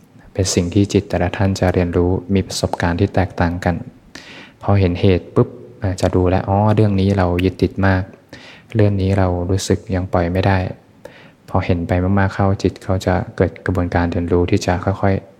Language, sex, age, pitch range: Thai, male, 20-39, 90-100 Hz